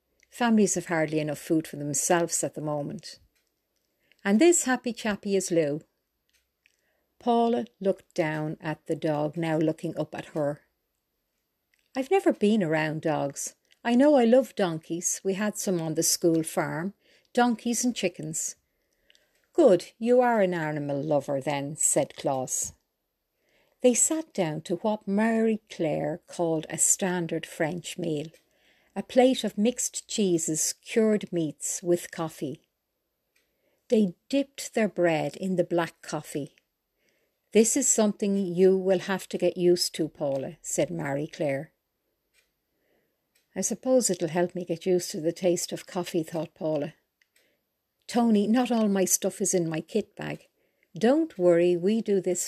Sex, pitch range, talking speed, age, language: female, 160-220 Hz, 145 wpm, 60-79, English